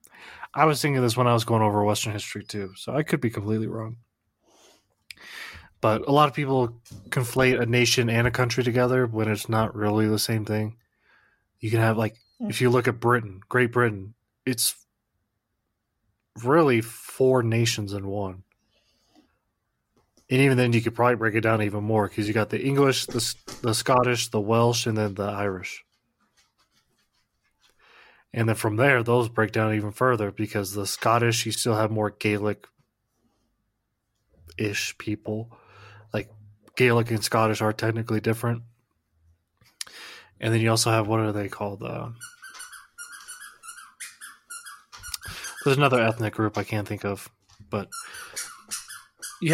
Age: 30-49